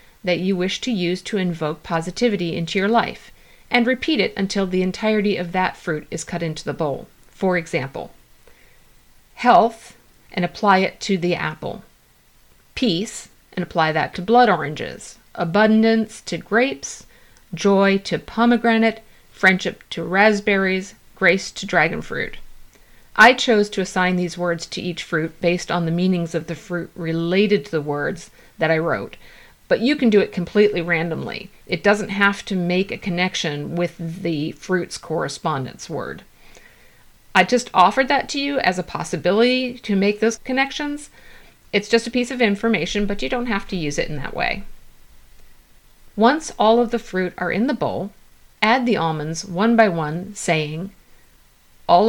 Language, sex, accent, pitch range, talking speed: English, female, American, 170-220 Hz, 165 wpm